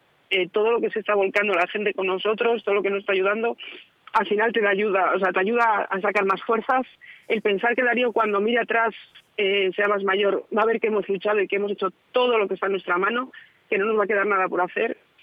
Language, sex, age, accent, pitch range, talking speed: Spanish, female, 30-49, Spanish, 185-220 Hz, 265 wpm